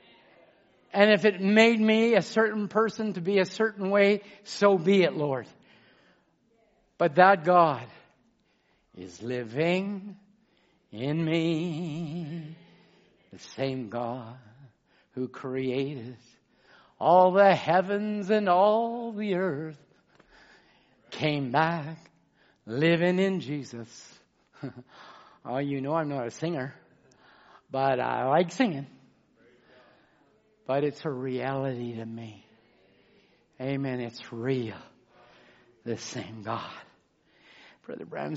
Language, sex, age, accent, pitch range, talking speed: English, male, 60-79, American, 130-195 Hz, 105 wpm